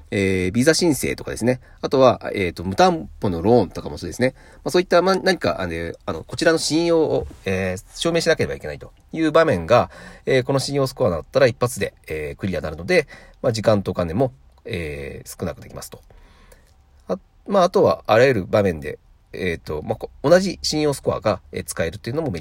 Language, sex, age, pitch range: Japanese, male, 40-59, 80-130 Hz